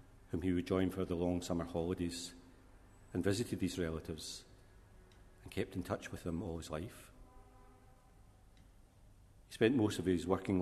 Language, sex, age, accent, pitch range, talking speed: English, male, 40-59, British, 90-100 Hz, 155 wpm